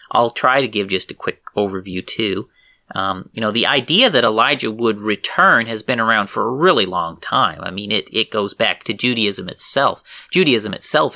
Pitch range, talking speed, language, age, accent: 105-135 Hz, 200 wpm, English, 30-49, American